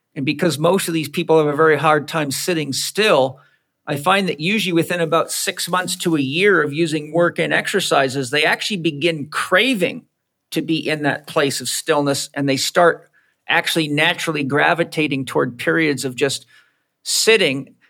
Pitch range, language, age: 145-170 Hz, English, 50-69